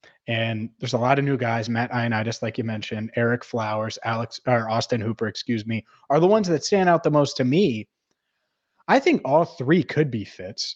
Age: 30-49